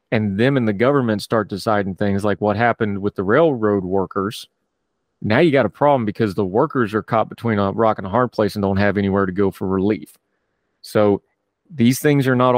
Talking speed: 215 wpm